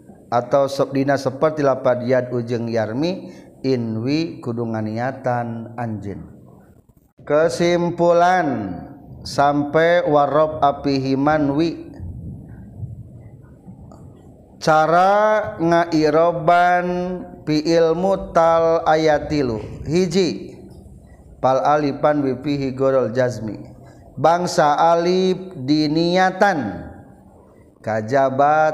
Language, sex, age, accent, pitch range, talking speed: Indonesian, male, 40-59, native, 130-165 Hz, 65 wpm